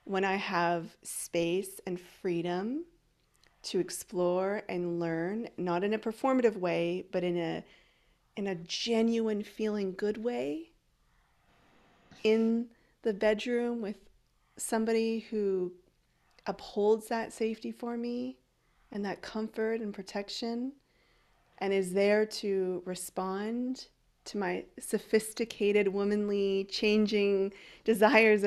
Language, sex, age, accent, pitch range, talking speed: English, female, 30-49, American, 195-235 Hz, 110 wpm